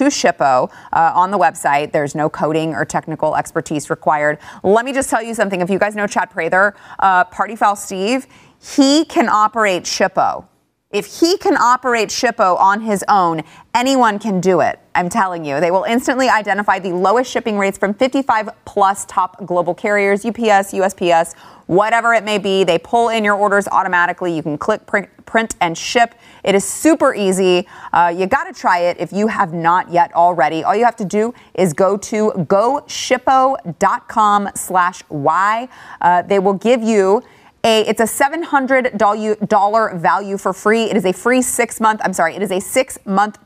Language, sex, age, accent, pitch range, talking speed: English, female, 30-49, American, 180-230 Hz, 175 wpm